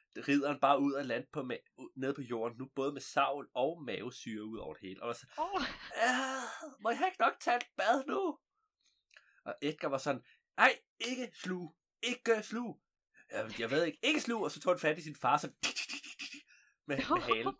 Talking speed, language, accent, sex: 195 wpm, Danish, native, male